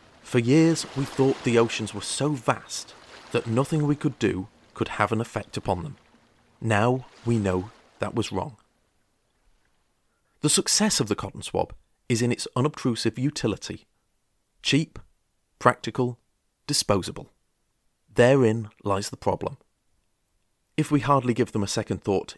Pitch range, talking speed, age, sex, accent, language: 105-140 Hz, 140 wpm, 40-59, male, British, English